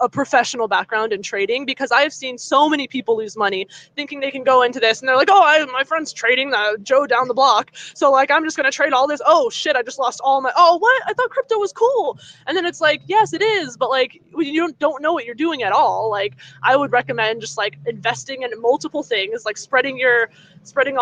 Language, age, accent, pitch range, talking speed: English, 20-39, American, 225-295 Hz, 245 wpm